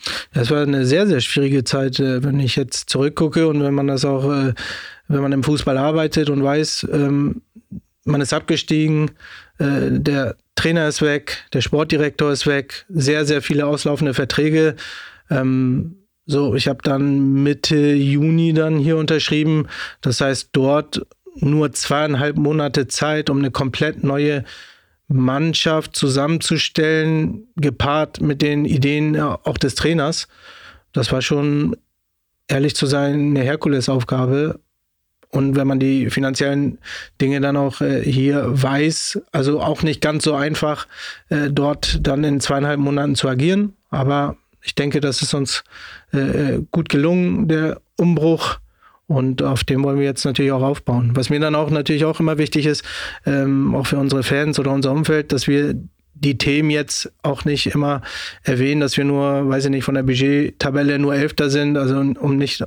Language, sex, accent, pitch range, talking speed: German, male, German, 140-155 Hz, 150 wpm